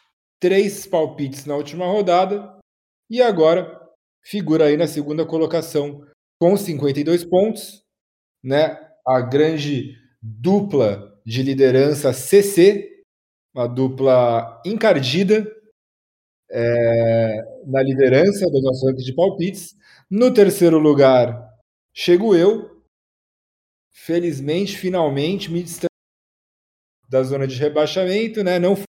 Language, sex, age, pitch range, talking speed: Portuguese, male, 40-59, 135-185 Hz, 100 wpm